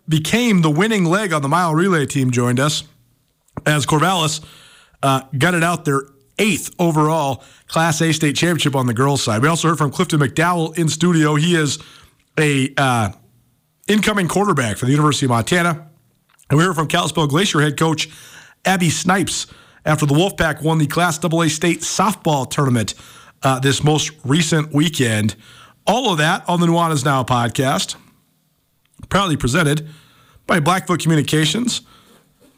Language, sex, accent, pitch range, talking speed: English, male, American, 145-180 Hz, 155 wpm